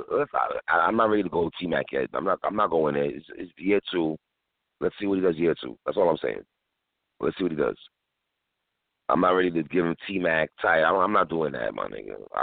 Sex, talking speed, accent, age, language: male, 235 wpm, American, 30-49, English